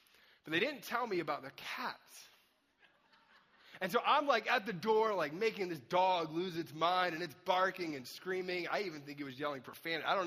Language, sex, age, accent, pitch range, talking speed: English, male, 30-49, American, 180-240 Hz, 210 wpm